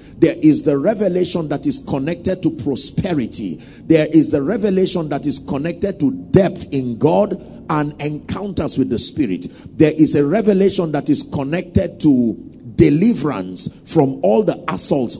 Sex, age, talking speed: male, 40-59, 150 wpm